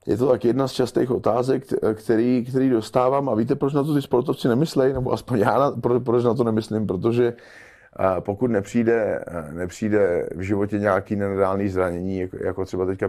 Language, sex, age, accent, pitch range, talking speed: Czech, male, 30-49, native, 100-130 Hz, 175 wpm